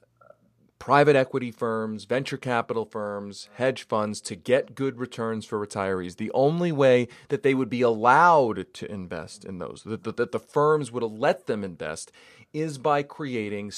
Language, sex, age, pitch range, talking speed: English, male, 40-59, 105-135 Hz, 160 wpm